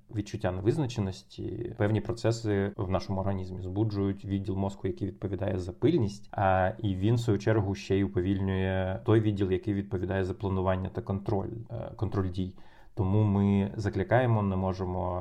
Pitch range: 95-110 Hz